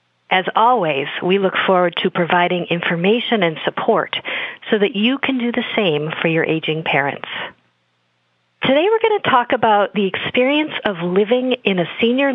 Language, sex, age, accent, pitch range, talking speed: English, female, 40-59, American, 170-225 Hz, 165 wpm